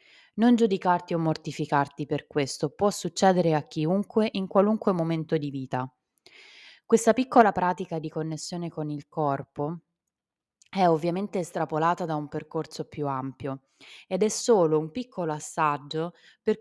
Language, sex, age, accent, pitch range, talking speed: Italian, female, 20-39, native, 155-200 Hz, 135 wpm